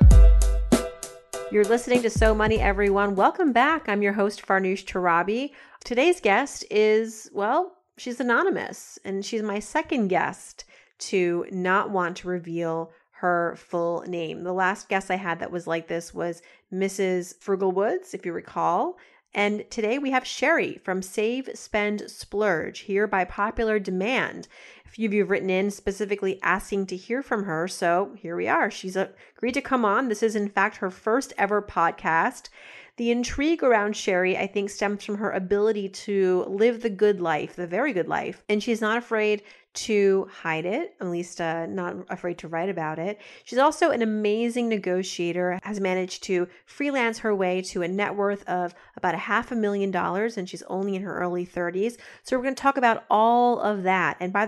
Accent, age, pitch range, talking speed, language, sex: American, 30-49, 185-225 Hz, 180 wpm, English, female